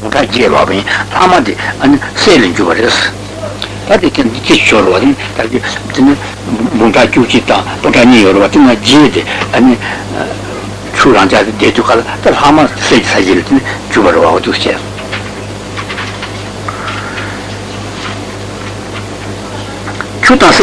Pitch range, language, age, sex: 100-130 Hz, Italian, 60-79, male